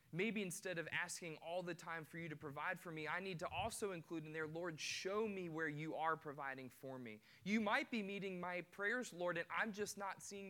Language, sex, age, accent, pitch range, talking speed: English, male, 20-39, American, 120-165 Hz, 235 wpm